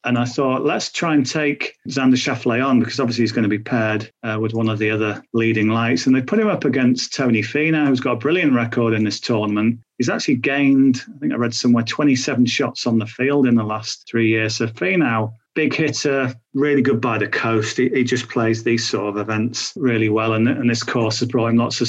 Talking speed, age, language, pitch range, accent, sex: 240 wpm, 40-59, English, 115-140 Hz, British, male